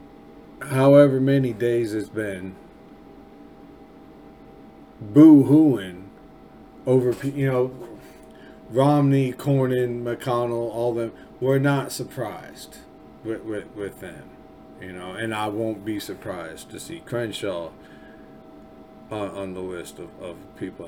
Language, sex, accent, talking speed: English, male, American, 105 wpm